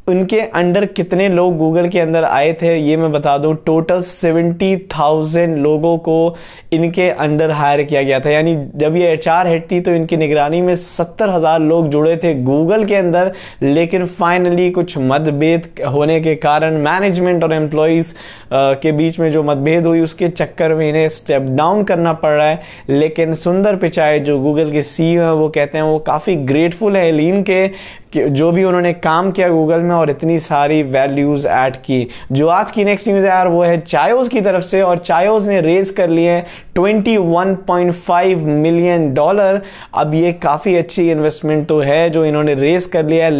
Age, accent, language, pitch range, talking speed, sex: 20-39, native, Hindi, 155-180 Hz, 185 wpm, male